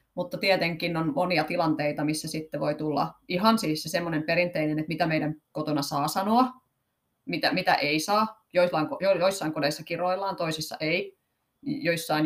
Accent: native